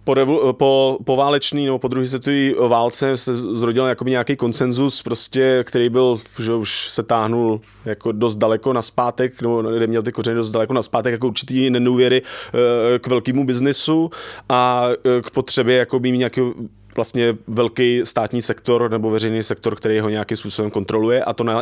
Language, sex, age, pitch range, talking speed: Czech, male, 20-39, 115-130 Hz, 165 wpm